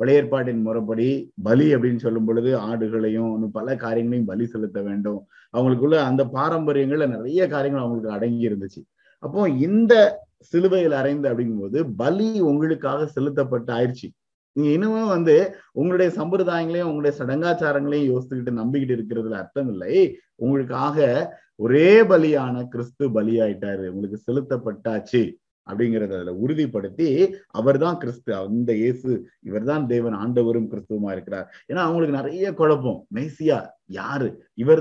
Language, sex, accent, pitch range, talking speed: Tamil, male, native, 115-155 Hz, 110 wpm